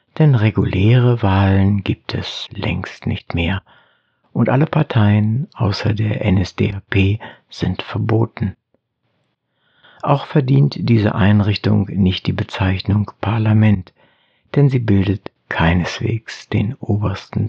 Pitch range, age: 100-125 Hz, 60-79